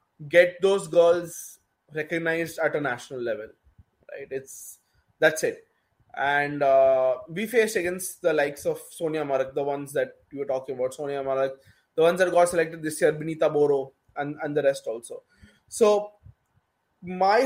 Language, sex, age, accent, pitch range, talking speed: English, male, 20-39, Indian, 160-220 Hz, 160 wpm